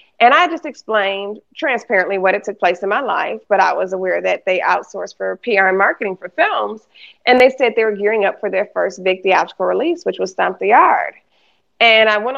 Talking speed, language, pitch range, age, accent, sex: 225 wpm, English, 190-225 Hz, 30-49, American, female